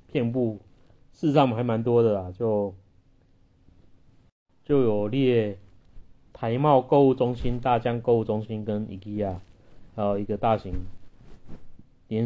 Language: Chinese